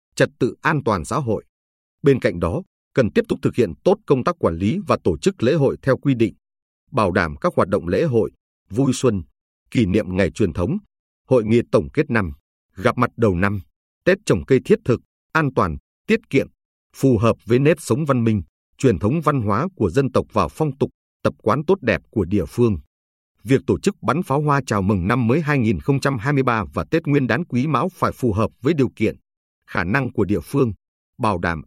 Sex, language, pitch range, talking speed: male, Vietnamese, 90-135 Hz, 215 wpm